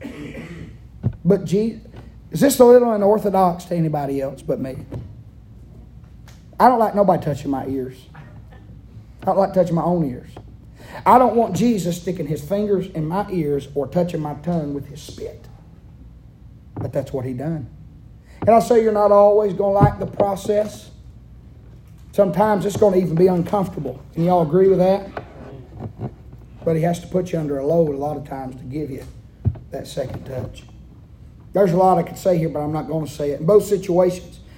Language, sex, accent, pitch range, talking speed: English, male, American, 140-190 Hz, 185 wpm